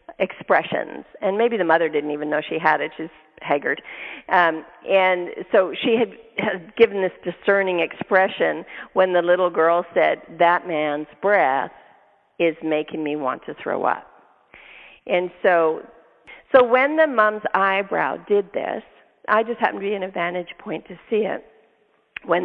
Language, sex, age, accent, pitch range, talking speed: English, female, 50-69, American, 185-245 Hz, 160 wpm